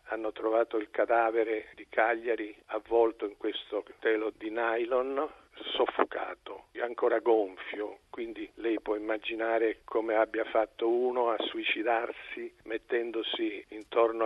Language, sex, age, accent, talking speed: Italian, male, 50-69, native, 120 wpm